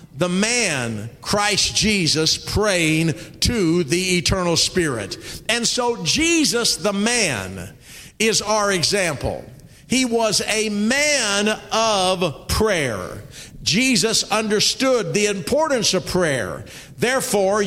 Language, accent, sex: English, American, male